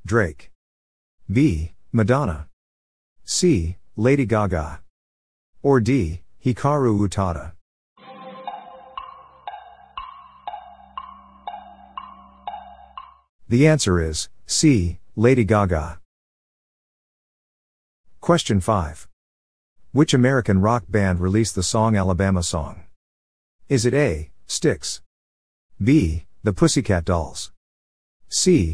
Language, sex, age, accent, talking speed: English, male, 50-69, American, 75 wpm